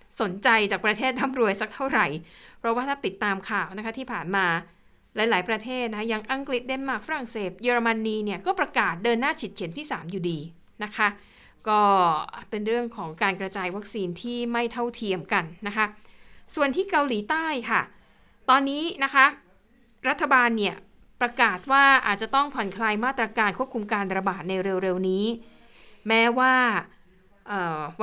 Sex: female